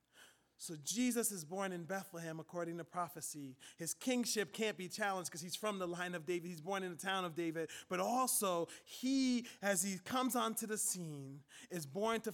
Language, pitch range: English, 180-245 Hz